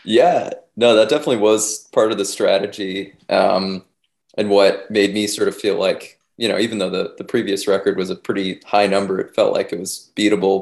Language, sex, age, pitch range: English, male, 20-39, 100-110 Hz